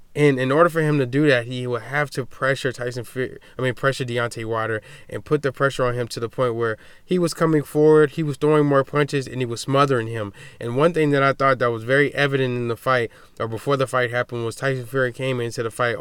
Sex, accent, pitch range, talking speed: male, American, 120-140 Hz, 260 wpm